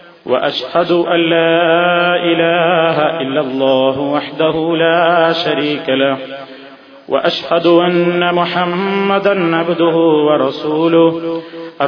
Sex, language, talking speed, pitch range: male, Malayalam, 75 wpm, 135-170 Hz